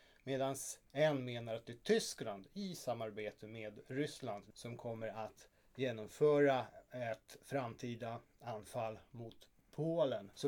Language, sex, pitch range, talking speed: Swedish, male, 110-135 Hz, 120 wpm